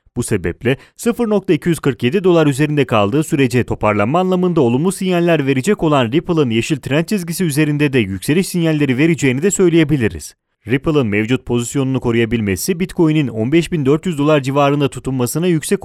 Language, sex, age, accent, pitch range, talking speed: Italian, male, 30-49, Turkish, 115-170 Hz, 130 wpm